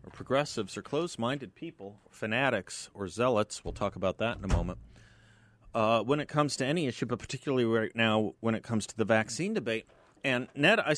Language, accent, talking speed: English, American, 190 wpm